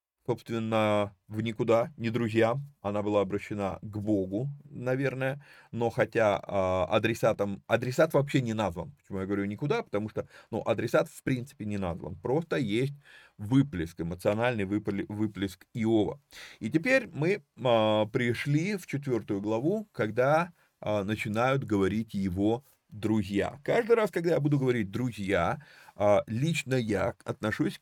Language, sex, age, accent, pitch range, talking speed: Russian, male, 30-49, native, 100-140 Hz, 135 wpm